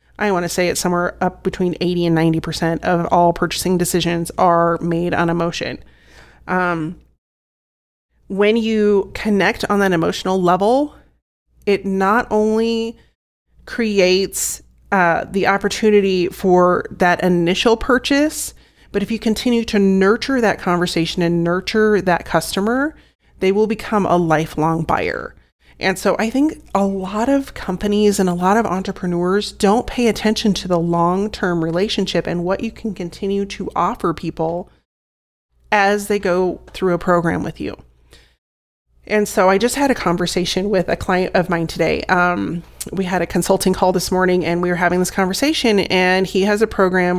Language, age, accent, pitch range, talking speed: English, 30-49, American, 175-205 Hz, 160 wpm